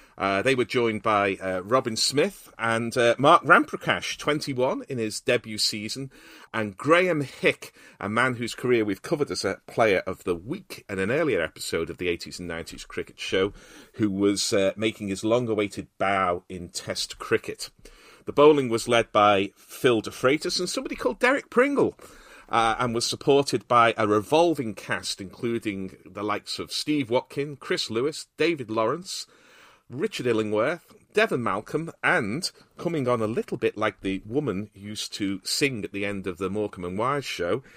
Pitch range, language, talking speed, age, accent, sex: 105-145 Hz, English, 170 wpm, 40-59, British, male